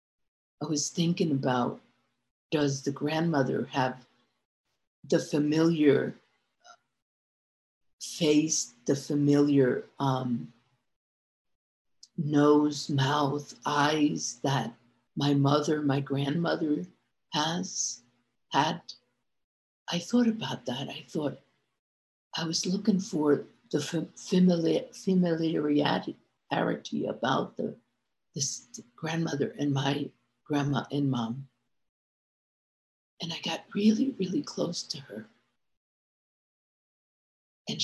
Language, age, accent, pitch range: English, 60-79, American, 125-165 Hz